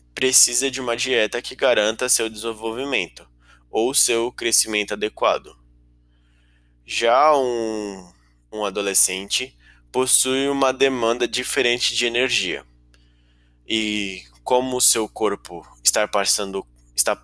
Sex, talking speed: male, 100 wpm